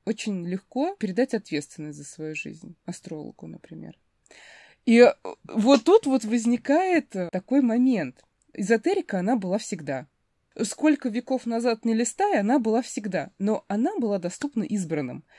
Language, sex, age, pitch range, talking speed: Russian, female, 20-39, 190-250 Hz, 130 wpm